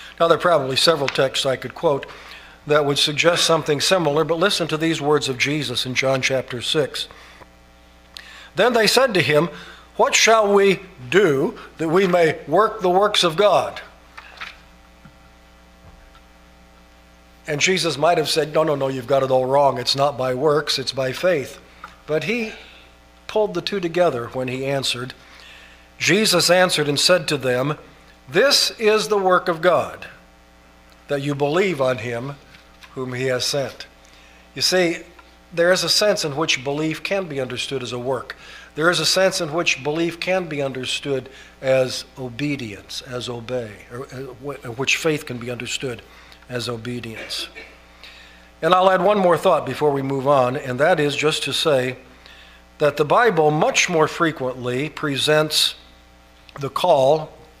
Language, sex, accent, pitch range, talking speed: English, male, American, 115-165 Hz, 160 wpm